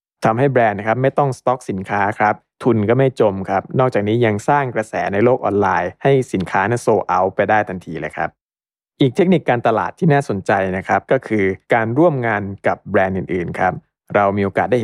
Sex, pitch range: male, 100-125 Hz